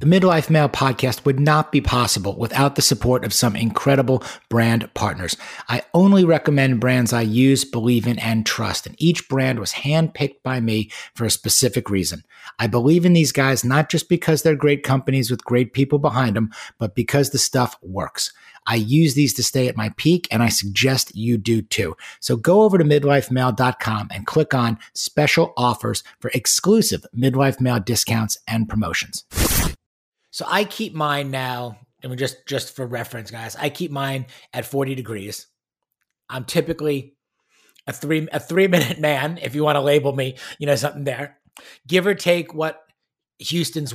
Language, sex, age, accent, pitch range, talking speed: English, male, 50-69, American, 125-145 Hz, 180 wpm